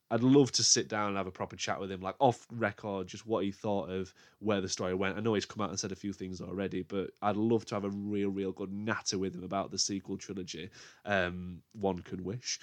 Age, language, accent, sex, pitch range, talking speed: 20-39, English, British, male, 100-130 Hz, 260 wpm